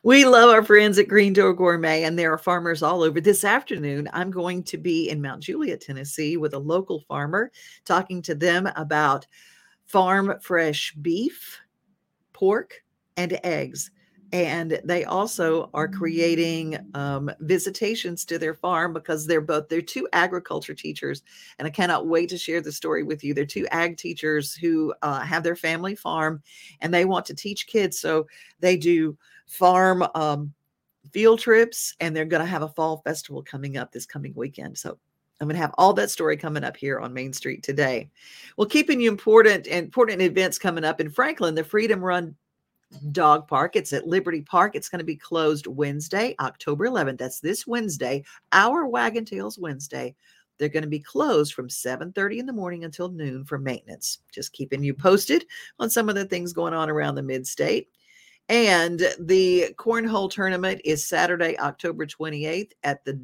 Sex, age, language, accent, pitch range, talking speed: female, 50-69, English, American, 155-190 Hz, 180 wpm